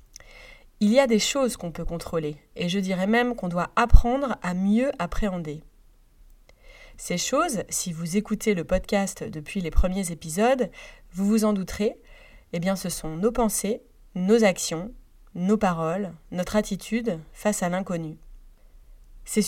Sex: female